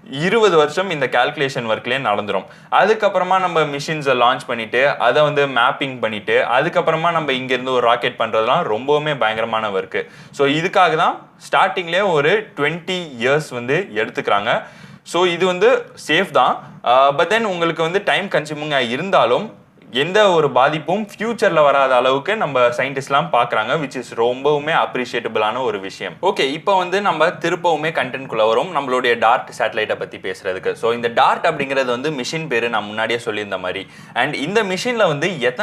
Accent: native